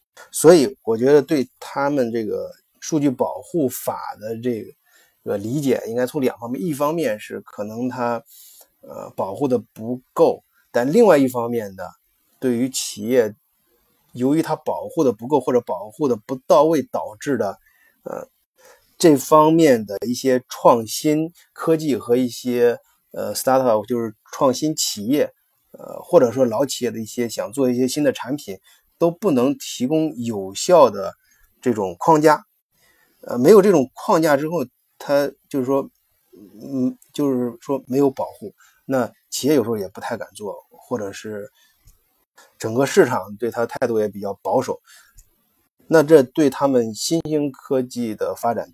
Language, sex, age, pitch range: Chinese, male, 20-39, 115-150 Hz